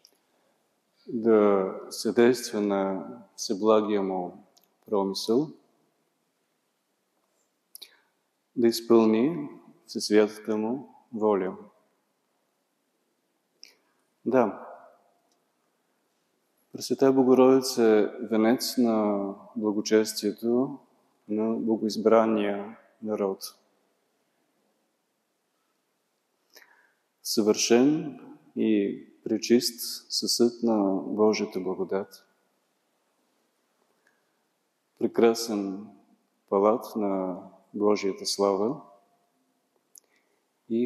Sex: male